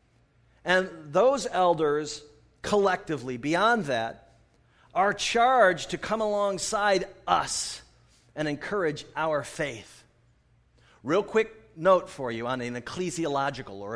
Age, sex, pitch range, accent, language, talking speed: 40-59, male, 135-180 Hz, American, English, 110 wpm